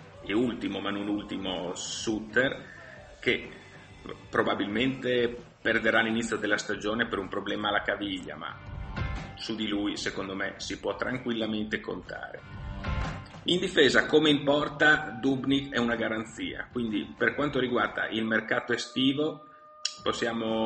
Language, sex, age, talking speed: Italian, male, 40-59, 130 wpm